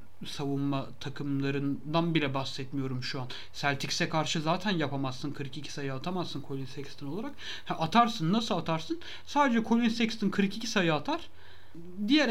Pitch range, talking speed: 140-205 Hz, 130 wpm